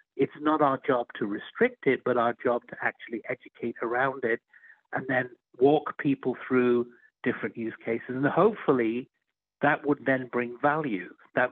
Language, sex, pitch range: English, male, 115-145 Hz